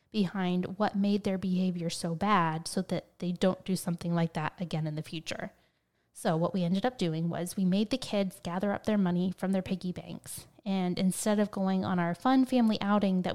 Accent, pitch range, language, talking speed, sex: American, 175-210 Hz, English, 215 wpm, female